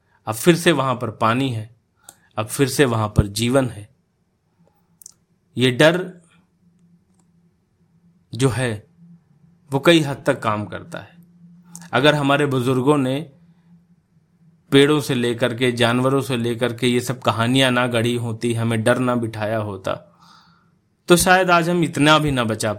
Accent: native